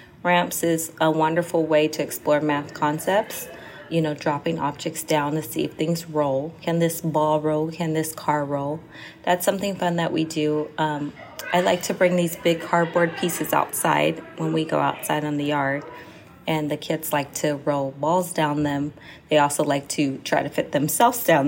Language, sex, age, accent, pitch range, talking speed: English, female, 20-39, American, 150-170 Hz, 190 wpm